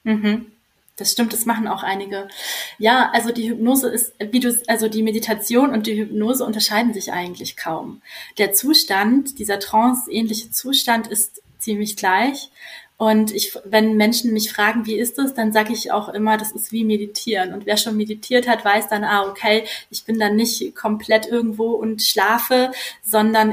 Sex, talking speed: female, 175 wpm